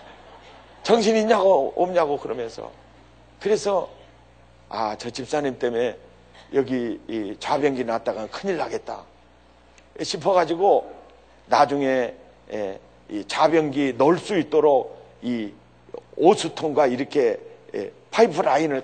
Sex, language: male, Korean